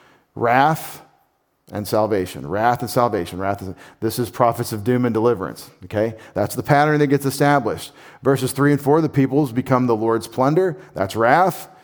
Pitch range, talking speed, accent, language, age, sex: 115-145 Hz, 170 wpm, American, English, 40-59, male